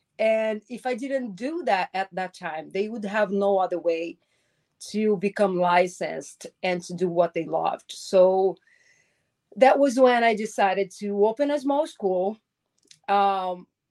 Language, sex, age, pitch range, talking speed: English, female, 30-49, 185-240 Hz, 155 wpm